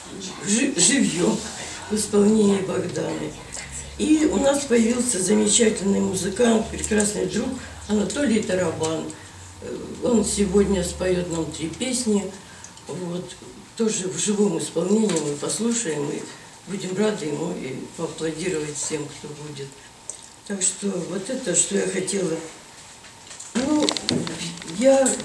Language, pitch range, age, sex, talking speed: Ukrainian, 180-230 Hz, 60-79, female, 105 wpm